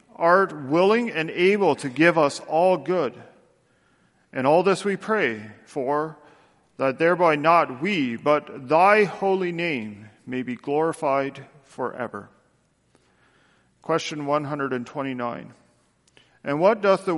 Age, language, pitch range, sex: 40-59, English, 125-165 Hz, male